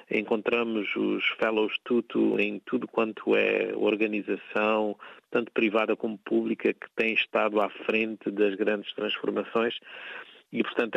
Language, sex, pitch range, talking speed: Portuguese, male, 105-120 Hz, 125 wpm